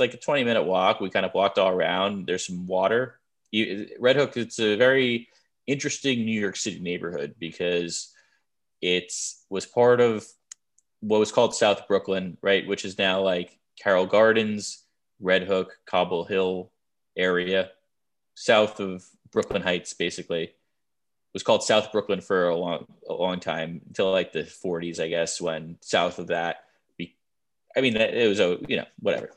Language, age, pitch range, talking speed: English, 20-39, 90-110 Hz, 160 wpm